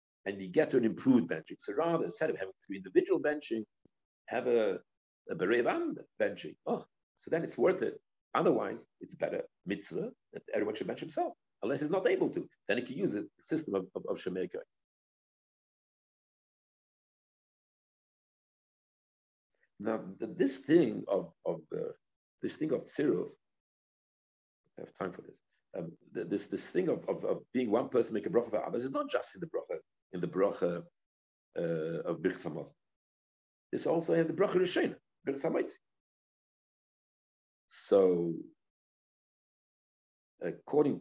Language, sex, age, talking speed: English, male, 60-79, 150 wpm